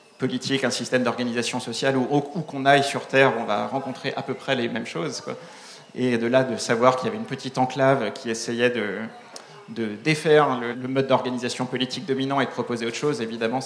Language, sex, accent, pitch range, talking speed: French, male, French, 120-145 Hz, 210 wpm